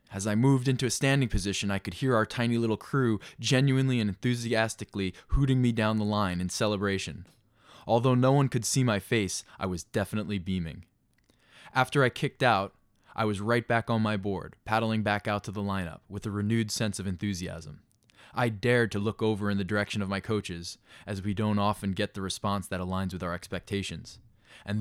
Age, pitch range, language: 20-39, 95-115 Hz, English